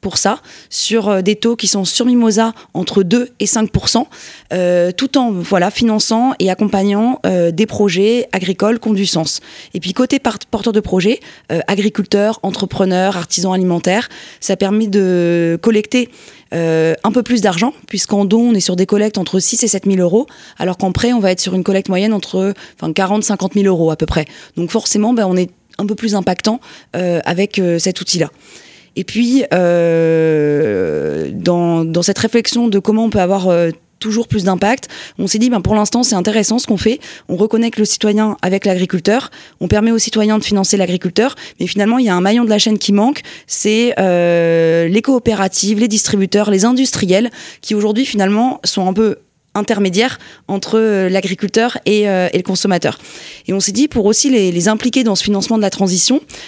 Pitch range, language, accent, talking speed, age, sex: 185-225 Hz, French, French, 195 wpm, 20-39, female